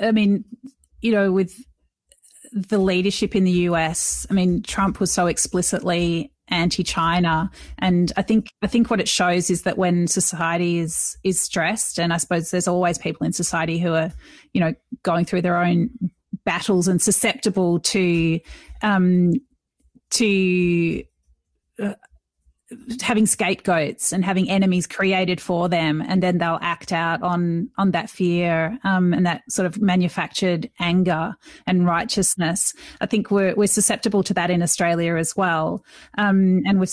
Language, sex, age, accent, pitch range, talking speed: English, female, 30-49, Australian, 170-195 Hz, 155 wpm